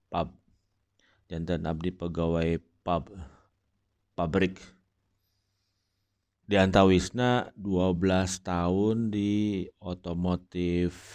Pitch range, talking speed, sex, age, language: 85-95 Hz, 65 wpm, male, 30-49, English